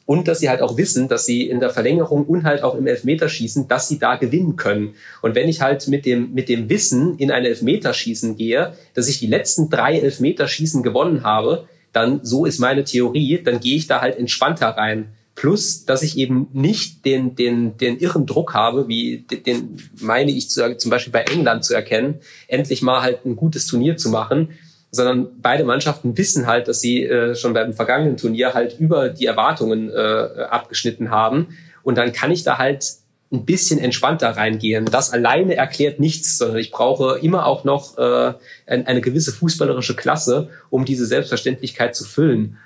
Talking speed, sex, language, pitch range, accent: 180 wpm, male, German, 120-150 Hz, German